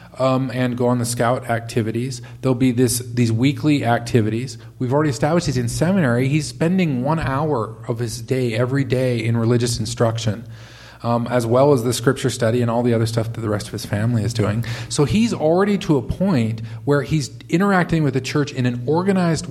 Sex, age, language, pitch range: male, 40-59, English, 115-145 Hz